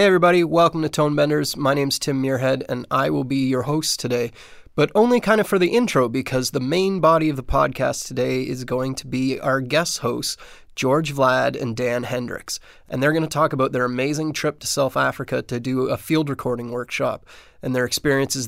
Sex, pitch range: male, 130-150 Hz